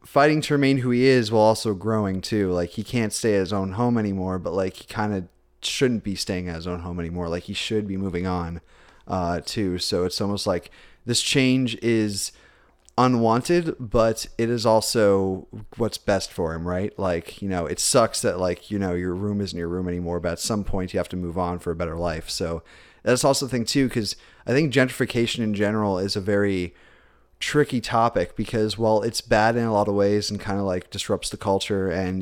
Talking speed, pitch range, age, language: 220 wpm, 90-110 Hz, 30-49, English